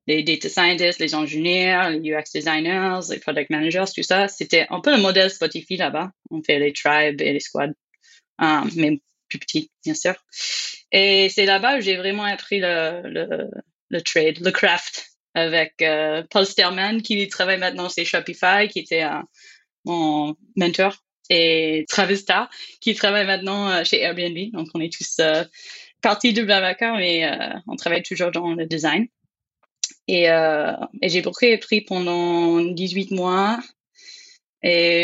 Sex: female